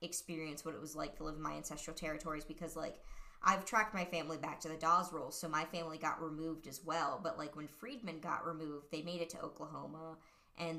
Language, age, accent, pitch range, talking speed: English, 20-39, American, 155-175 Hz, 230 wpm